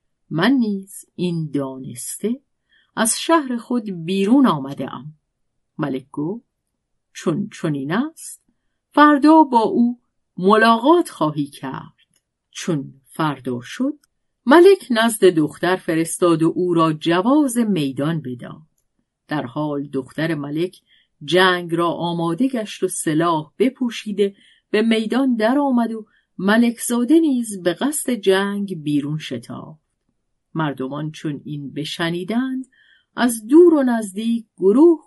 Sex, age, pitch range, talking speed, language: female, 50-69, 155-230 Hz, 115 wpm, Persian